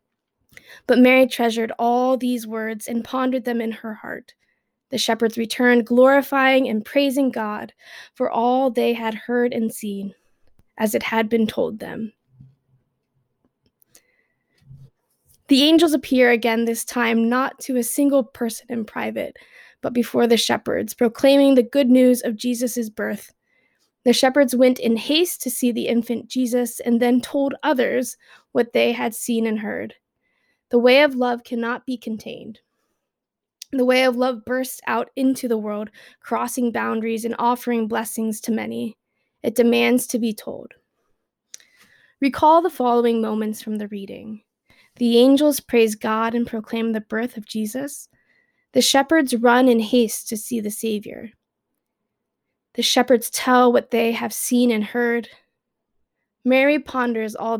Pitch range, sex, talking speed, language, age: 225-255 Hz, female, 150 wpm, English, 20-39